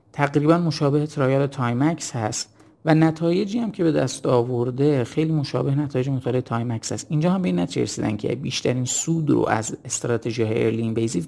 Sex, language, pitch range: male, Persian, 115-155 Hz